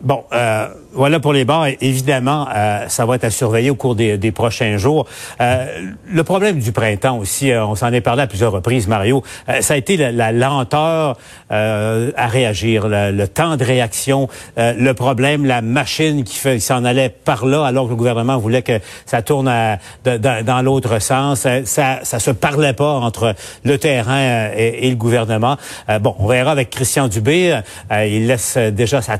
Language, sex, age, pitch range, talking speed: French, male, 60-79, 115-145 Hz, 205 wpm